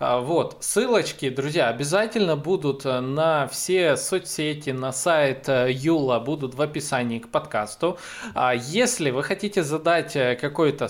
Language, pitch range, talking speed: Russian, 130-185 Hz, 115 wpm